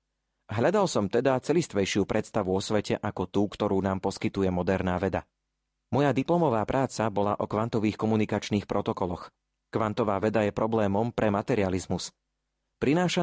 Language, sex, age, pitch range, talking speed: Slovak, male, 30-49, 95-120 Hz, 130 wpm